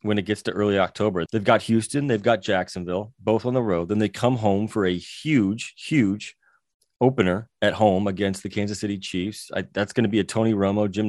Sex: male